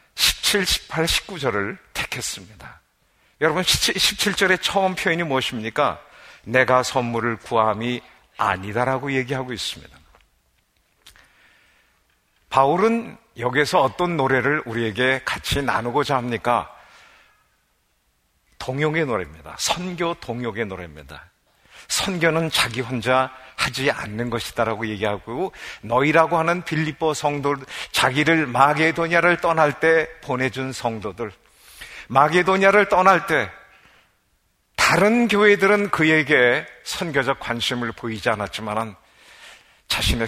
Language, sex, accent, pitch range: Korean, male, native, 115-160 Hz